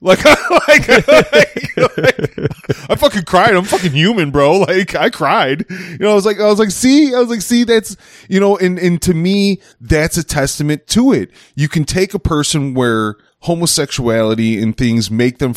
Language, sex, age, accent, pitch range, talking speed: English, male, 20-39, American, 90-145 Hz, 195 wpm